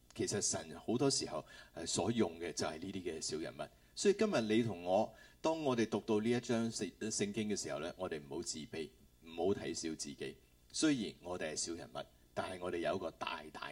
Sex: male